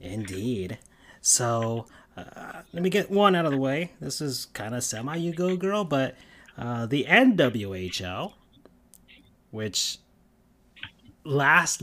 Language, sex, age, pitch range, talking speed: English, male, 30-49, 110-150 Hz, 115 wpm